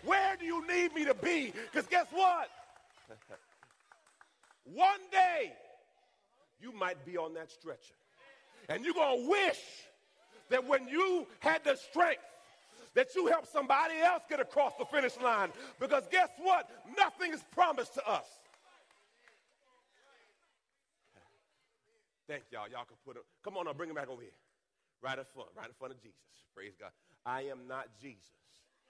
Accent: American